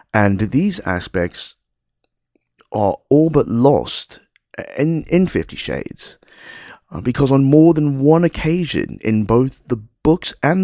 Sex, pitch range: male, 100-130 Hz